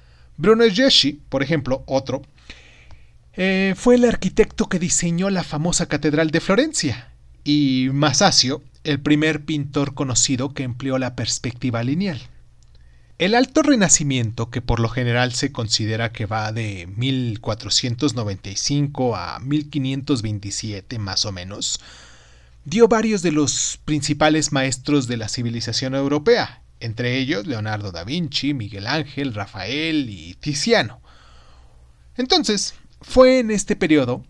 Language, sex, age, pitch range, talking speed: Spanish, male, 40-59, 110-165 Hz, 120 wpm